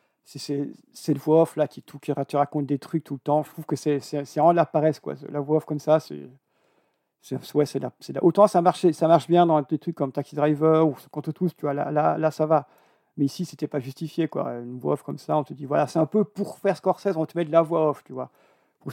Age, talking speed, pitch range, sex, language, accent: 50-69, 290 wpm, 145-170 Hz, male, French, French